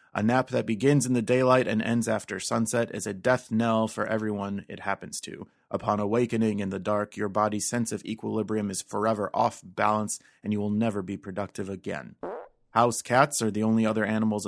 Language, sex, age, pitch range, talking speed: English, male, 30-49, 100-120 Hz, 200 wpm